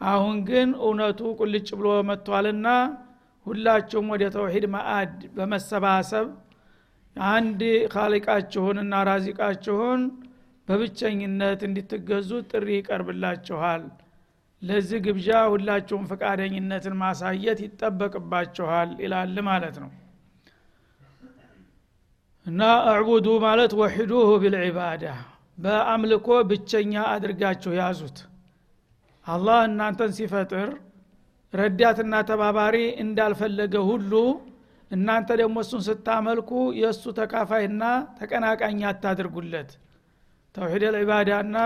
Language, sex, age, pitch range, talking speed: Amharic, male, 60-79, 195-225 Hz, 65 wpm